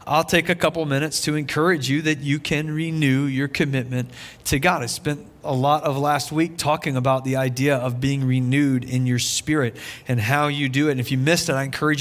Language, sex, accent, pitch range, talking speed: English, male, American, 130-165 Hz, 225 wpm